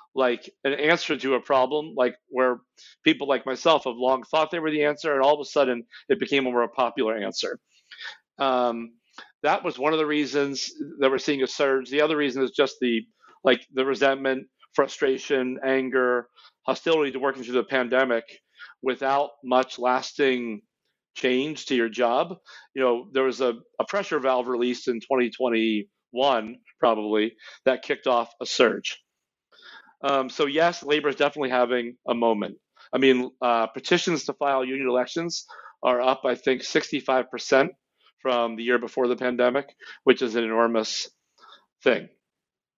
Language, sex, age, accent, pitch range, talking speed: English, male, 40-59, American, 125-140 Hz, 165 wpm